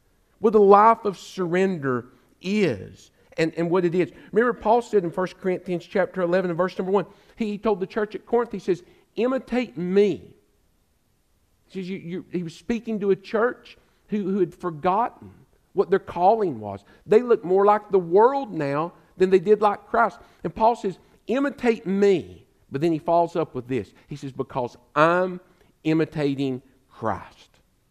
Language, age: English, 50-69